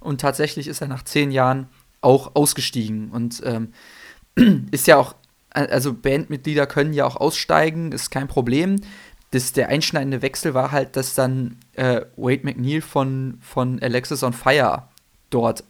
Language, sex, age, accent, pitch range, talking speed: German, male, 20-39, German, 125-145 Hz, 155 wpm